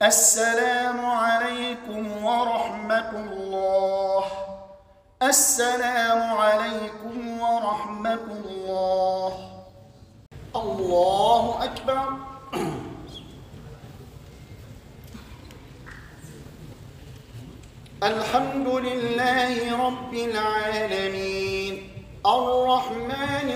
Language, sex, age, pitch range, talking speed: Arabic, male, 40-59, 195-250 Hz, 40 wpm